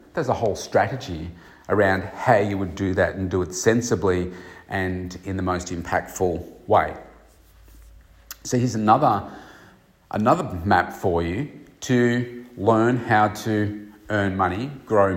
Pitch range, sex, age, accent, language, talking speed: 90-115 Hz, male, 40-59, Australian, English, 135 wpm